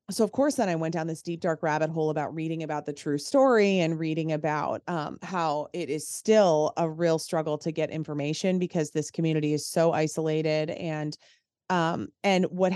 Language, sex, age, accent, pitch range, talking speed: English, female, 30-49, American, 155-190 Hz, 200 wpm